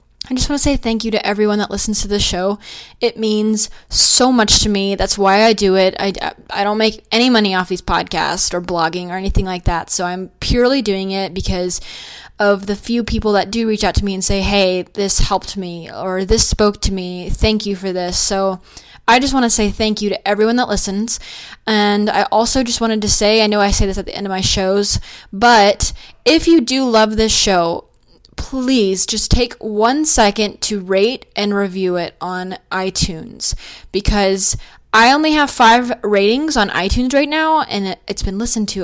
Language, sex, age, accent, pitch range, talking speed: English, female, 20-39, American, 195-235 Hz, 210 wpm